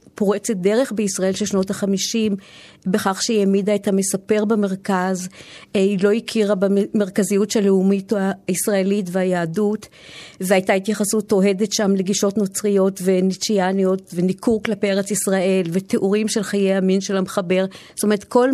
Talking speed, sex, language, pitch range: 130 wpm, female, Hebrew, 195-215 Hz